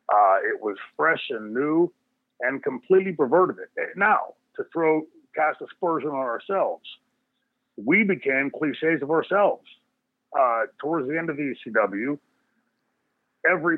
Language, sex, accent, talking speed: English, male, American, 130 wpm